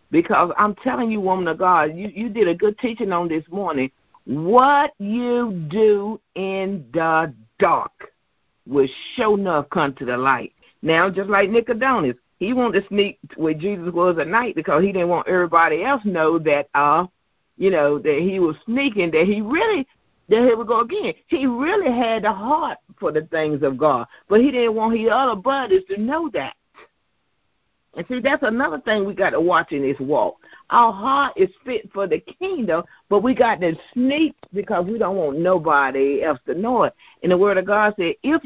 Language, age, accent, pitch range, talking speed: English, 50-69, American, 175-255 Hz, 195 wpm